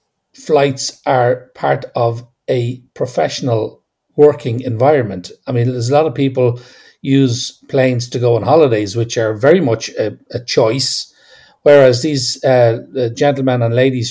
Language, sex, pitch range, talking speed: English, male, 120-140 Hz, 155 wpm